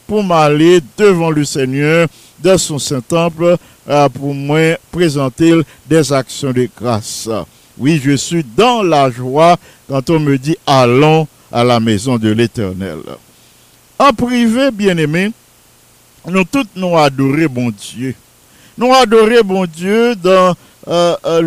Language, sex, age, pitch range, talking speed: English, male, 50-69, 135-185 Hz, 130 wpm